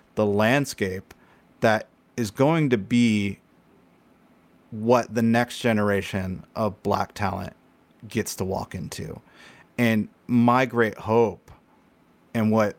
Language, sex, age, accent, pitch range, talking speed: English, male, 30-49, American, 100-120 Hz, 115 wpm